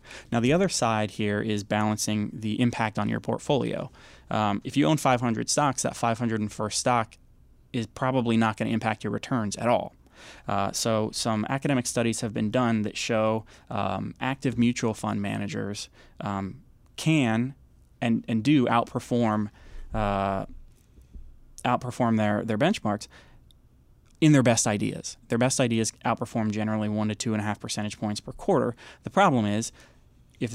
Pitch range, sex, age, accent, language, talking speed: 105-125 Hz, male, 20-39, American, English, 165 wpm